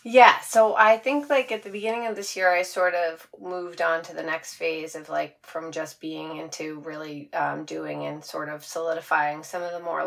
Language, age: English, 30-49